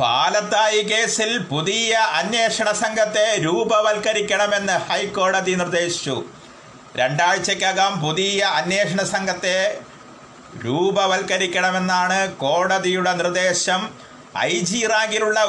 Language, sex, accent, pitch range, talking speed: Malayalam, male, native, 180-210 Hz, 70 wpm